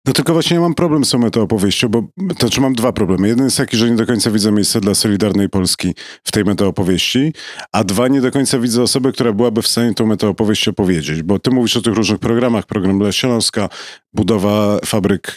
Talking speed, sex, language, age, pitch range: 215 wpm, male, Polish, 40-59, 100-125 Hz